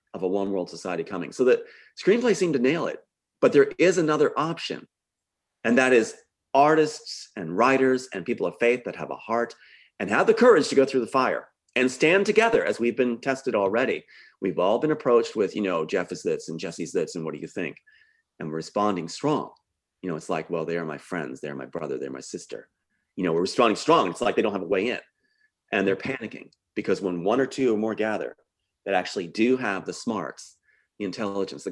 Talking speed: 225 wpm